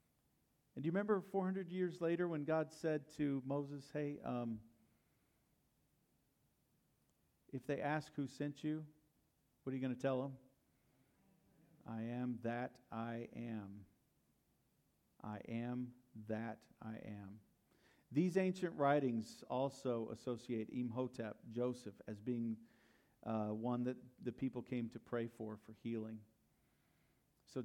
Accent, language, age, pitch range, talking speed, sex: American, English, 50-69, 115-140 Hz, 125 wpm, male